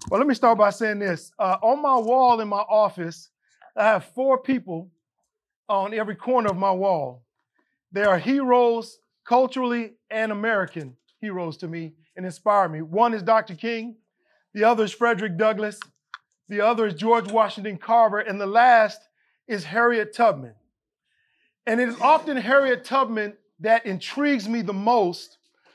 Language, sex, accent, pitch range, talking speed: English, male, American, 210-275 Hz, 160 wpm